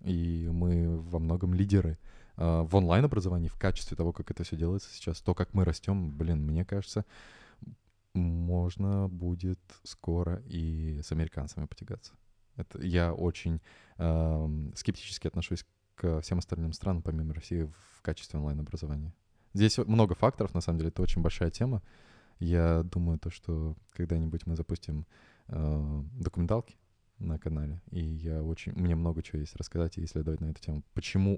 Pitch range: 80-100 Hz